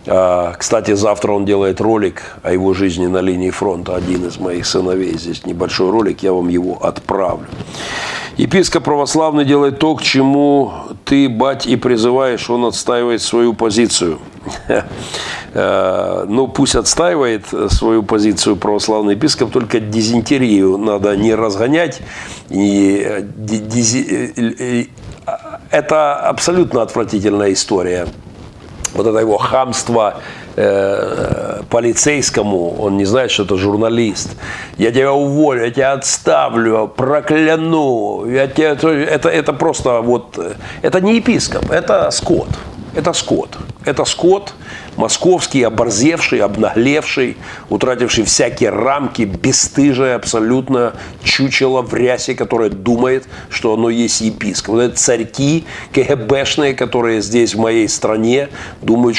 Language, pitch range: Russian, 105-135 Hz